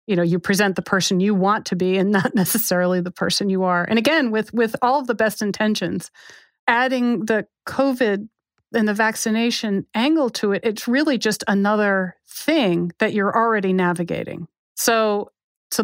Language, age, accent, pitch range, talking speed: English, 40-59, American, 185-230 Hz, 175 wpm